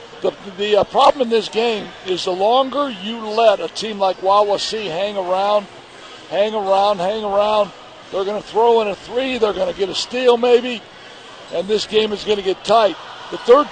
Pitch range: 195-225 Hz